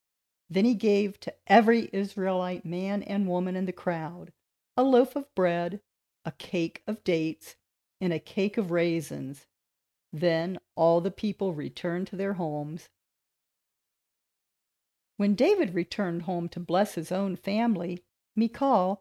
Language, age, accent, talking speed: English, 50-69, American, 135 wpm